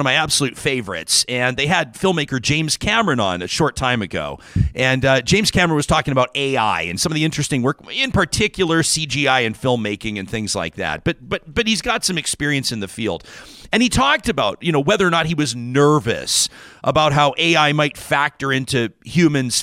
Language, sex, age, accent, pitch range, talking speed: English, male, 40-59, American, 130-185 Hz, 205 wpm